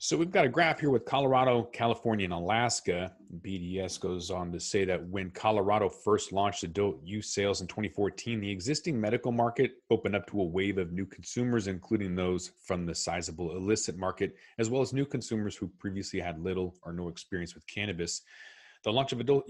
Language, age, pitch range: English, 30-49, 95-125 Hz